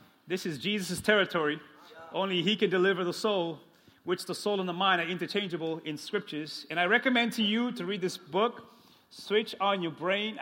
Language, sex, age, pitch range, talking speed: English, male, 30-49, 175-210 Hz, 190 wpm